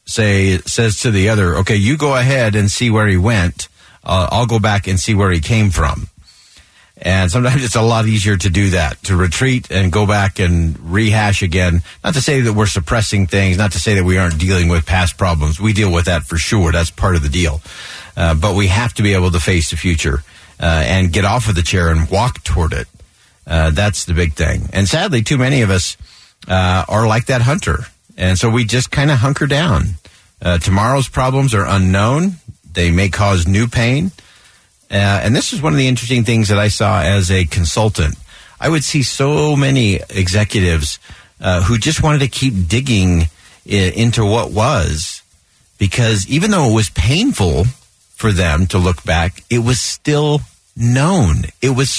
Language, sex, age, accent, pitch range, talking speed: English, male, 50-69, American, 90-115 Hz, 200 wpm